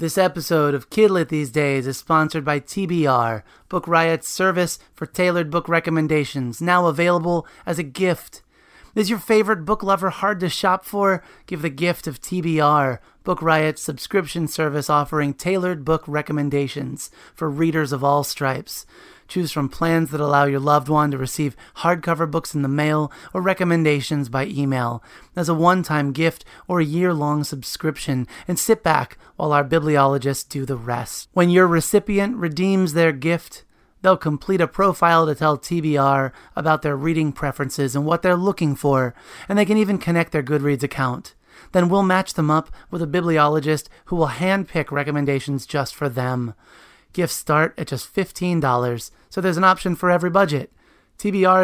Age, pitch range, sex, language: 30-49, 145-175 Hz, male, English